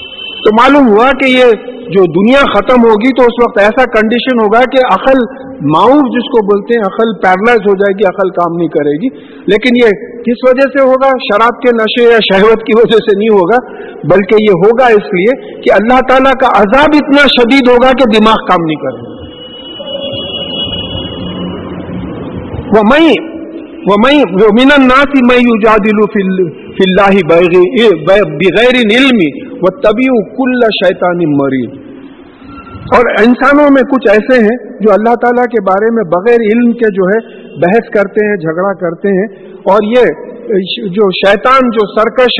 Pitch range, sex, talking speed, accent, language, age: 200-255 Hz, male, 150 wpm, Indian, English, 50-69